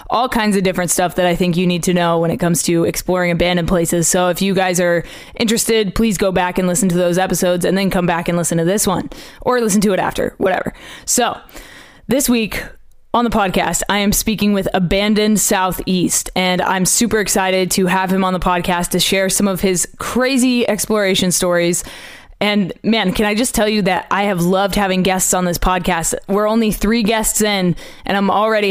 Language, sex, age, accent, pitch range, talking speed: English, female, 20-39, American, 180-220 Hz, 215 wpm